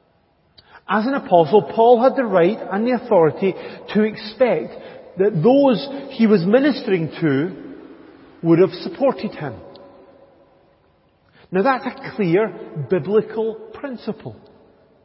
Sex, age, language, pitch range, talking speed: male, 40-59, English, 175-235 Hz, 110 wpm